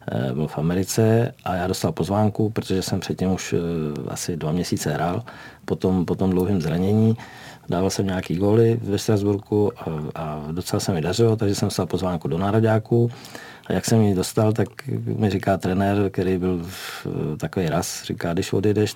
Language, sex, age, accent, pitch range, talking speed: Czech, male, 50-69, native, 90-110 Hz, 170 wpm